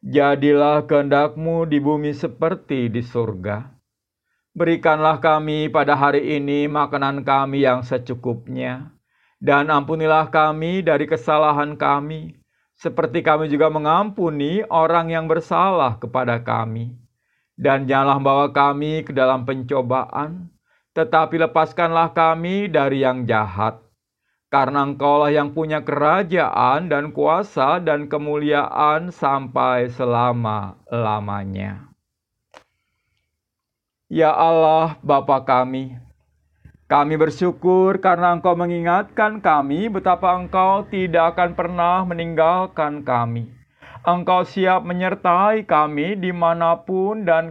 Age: 50-69